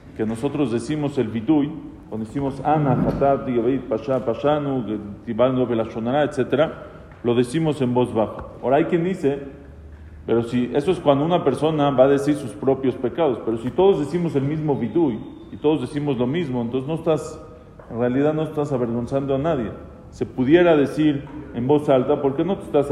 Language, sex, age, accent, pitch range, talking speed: English, male, 40-59, Mexican, 120-155 Hz, 185 wpm